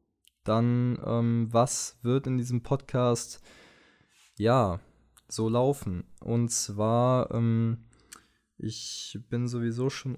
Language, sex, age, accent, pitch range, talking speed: German, male, 20-39, German, 105-120 Hz, 100 wpm